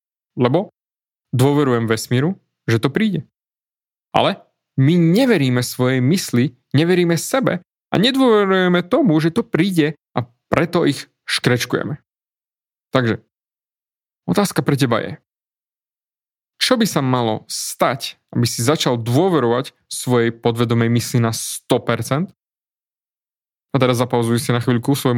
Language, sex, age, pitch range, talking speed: Slovak, male, 20-39, 120-165 Hz, 115 wpm